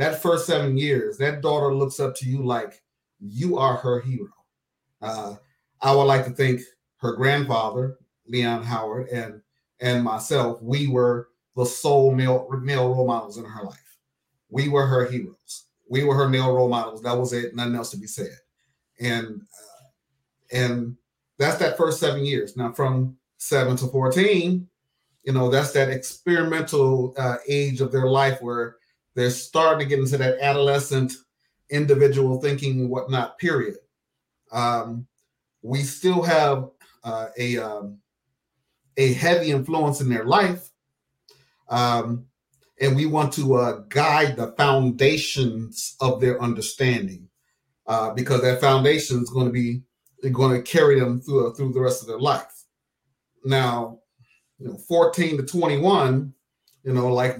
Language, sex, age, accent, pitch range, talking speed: English, male, 30-49, American, 120-140 Hz, 155 wpm